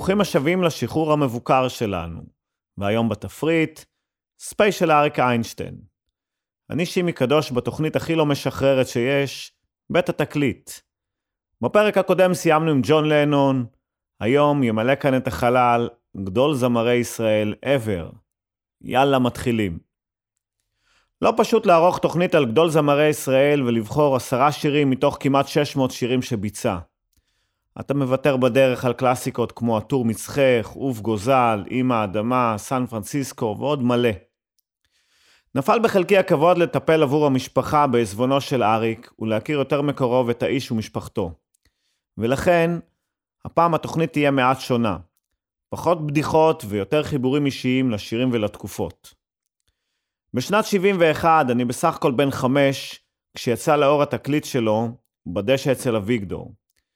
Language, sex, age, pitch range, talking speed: Hebrew, male, 30-49, 115-150 Hz, 115 wpm